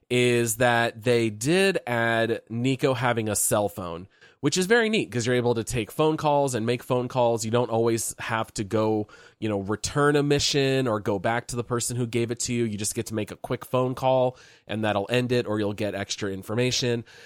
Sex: male